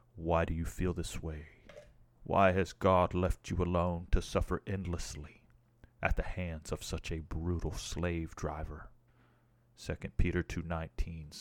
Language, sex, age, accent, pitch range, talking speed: English, male, 30-49, American, 80-105 Hz, 140 wpm